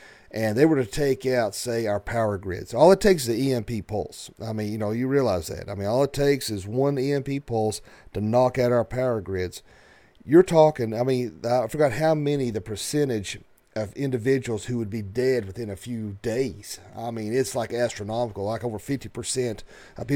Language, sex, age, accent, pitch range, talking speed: English, male, 40-59, American, 115-140 Hz, 205 wpm